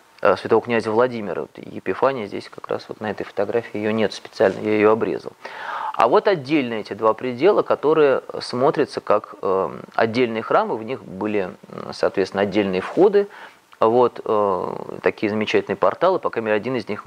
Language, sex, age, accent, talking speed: Russian, male, 30-49, native, 155 wpm